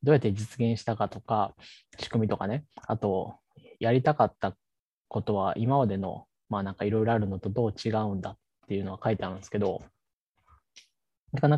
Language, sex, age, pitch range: Japanese, male, 20-39, 100-125 Hz